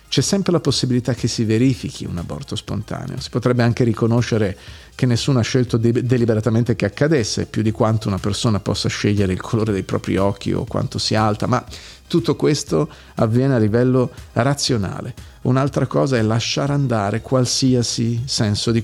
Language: Italian